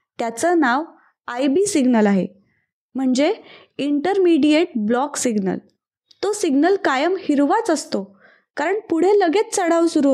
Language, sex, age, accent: Marathi, female, 20-39, native